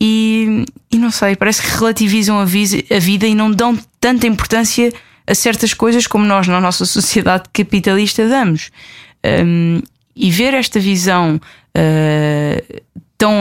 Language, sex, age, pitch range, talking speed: Portuguese, female, 20-39, 160-200 Hz, 140 wpm